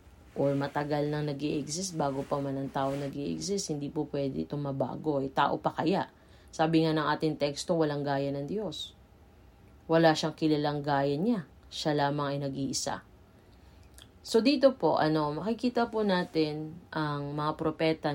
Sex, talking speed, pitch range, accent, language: female, 160 wpm, 135-160 Hz, native, Filipino